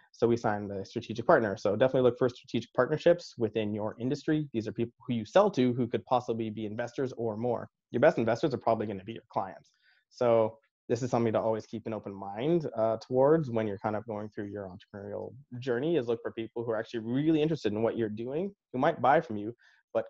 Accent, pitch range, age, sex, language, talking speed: American, 110-125 Hz, 20-39, male, English, 235 wpm